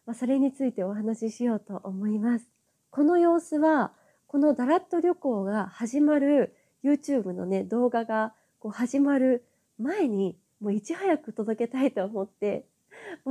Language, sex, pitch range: Japanese, female, 205-285 Hz